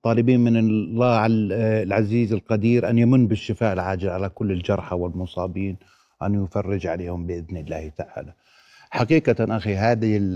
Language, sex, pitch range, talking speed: Arabic, male, 100-115 Hz, 125 wpm